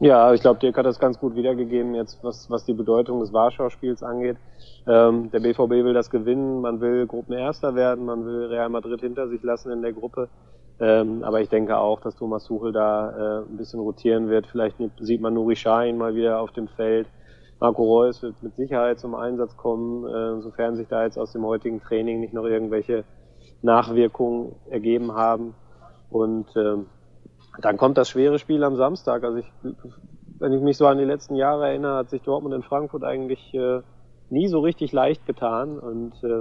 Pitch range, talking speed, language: 115-125 Hz, 190 wpm, German